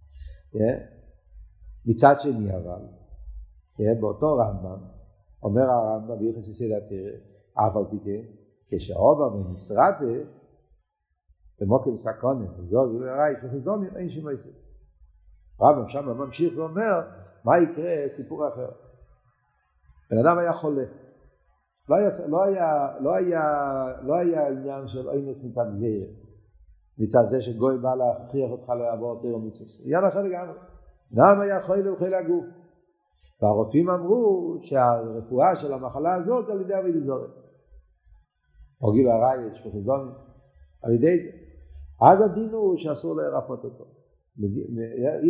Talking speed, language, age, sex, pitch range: 100 wpm, Hebrew, 60-79, male, 100-160 Hz